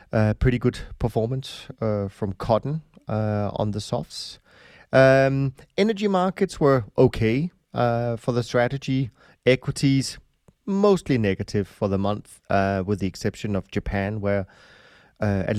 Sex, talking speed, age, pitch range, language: male, 135 wpm, 30-49, 105-125 Hz, English